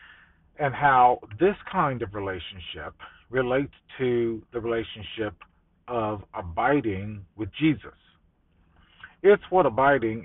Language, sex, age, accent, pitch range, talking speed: English, male, 40-59, American, 95-150 Hz, 100 wpm